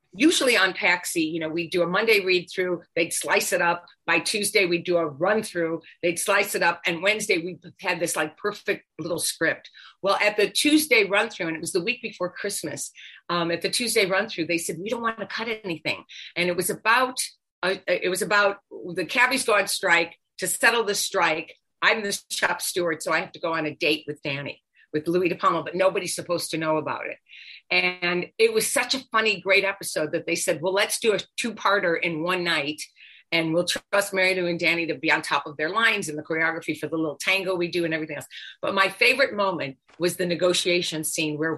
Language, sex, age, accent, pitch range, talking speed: English, female, 50-69, American, 170-205 Hz, 230 wpm